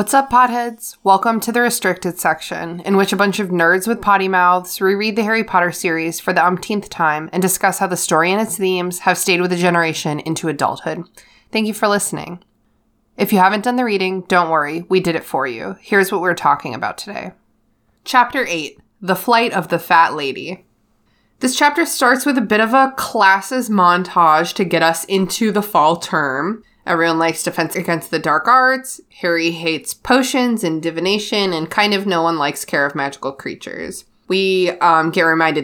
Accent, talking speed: American, 195 wpm